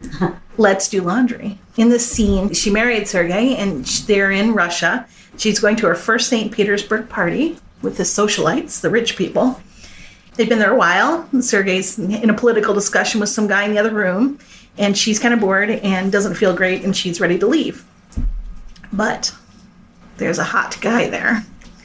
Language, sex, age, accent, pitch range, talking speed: English, female, 30-49, American, 190-230 Hz, 175 wpm